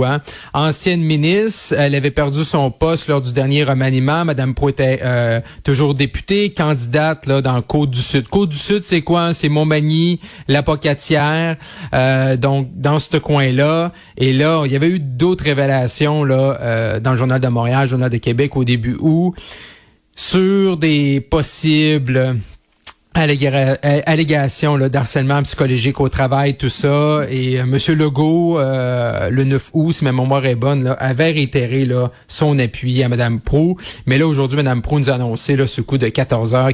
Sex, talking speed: male, 170 wpm